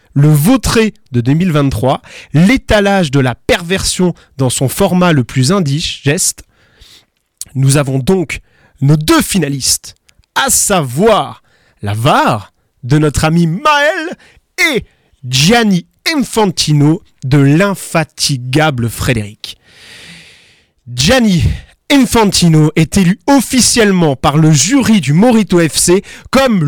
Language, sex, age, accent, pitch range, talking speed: French, male, 30-49, French, 135-200 Hz, 105 wpm